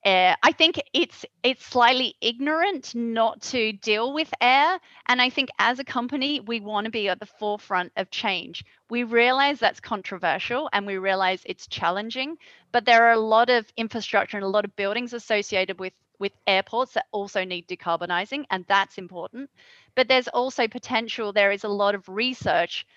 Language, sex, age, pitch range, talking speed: English, female, 30-49, 195-245 Hz, 180 wpm